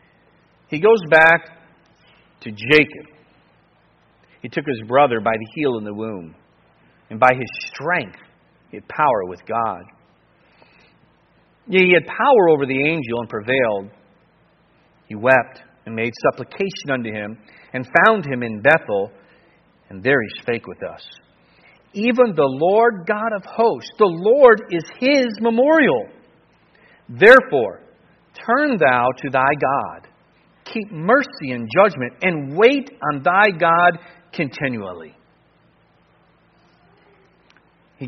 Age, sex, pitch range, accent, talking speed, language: 50-69, male, 140-205 Hz, American, 125 wpm, English